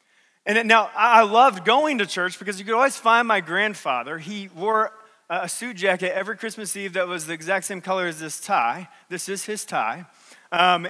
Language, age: English, 30-49